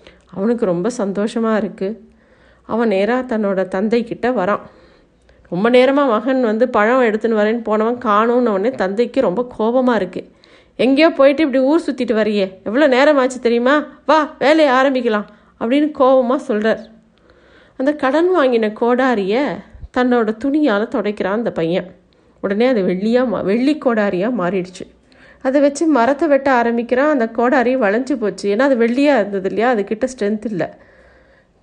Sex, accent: female, native